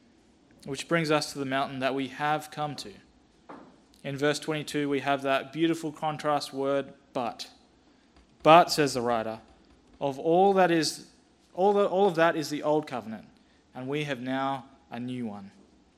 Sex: male